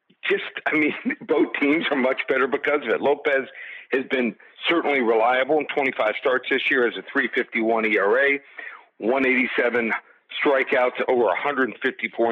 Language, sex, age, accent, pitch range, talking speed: English, male, 50-69, American, 125-150 Hz, 140 wpm